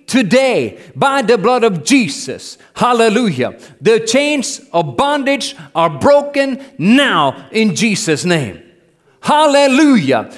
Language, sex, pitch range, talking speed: English, male, 200-295 Hz, 105 wpm